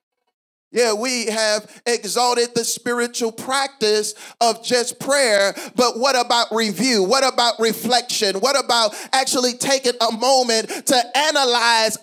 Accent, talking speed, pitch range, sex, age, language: American, 125 wpm, 205-265 Hz, male, 40-59, English